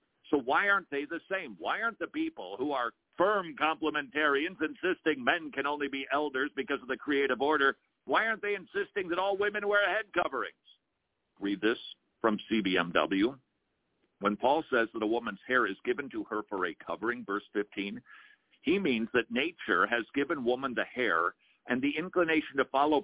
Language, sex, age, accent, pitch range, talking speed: English, male, 50-69, American, 130-205 Hz, 180 wpm